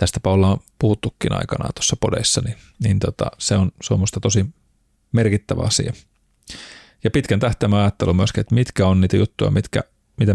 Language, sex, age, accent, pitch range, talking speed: Finnish, male, 30-49, native, 95-110 Hz, 160 wpm